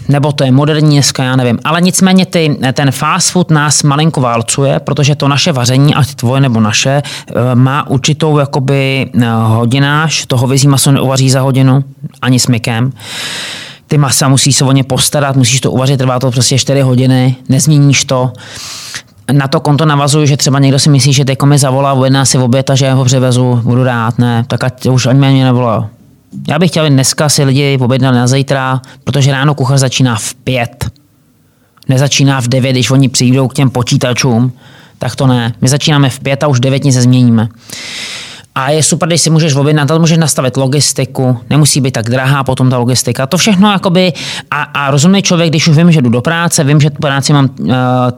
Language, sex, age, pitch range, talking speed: Czech, male, 30-49, 125-145 Hz, 195 wpm